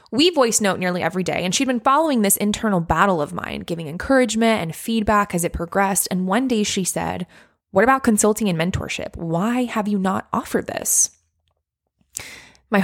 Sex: female